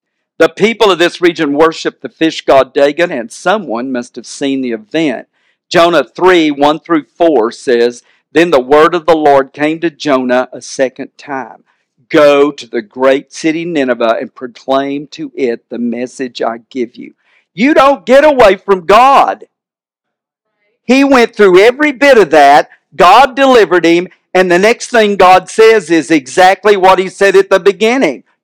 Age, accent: 50-69, American